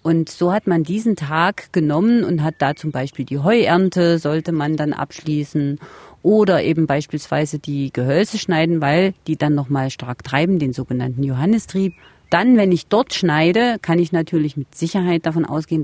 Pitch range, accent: 150-185 Hz, German